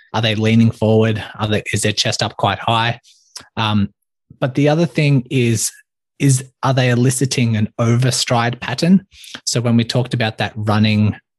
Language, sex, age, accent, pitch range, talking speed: English, male, 20-39, Australian, 110-130 Hz, 170 wpm